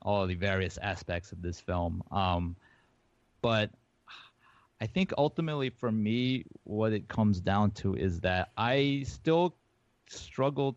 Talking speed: 135 wpm